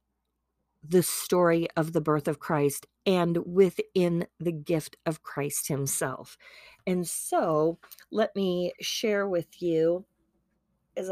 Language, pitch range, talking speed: English, 160-185 Hz, 120 wpm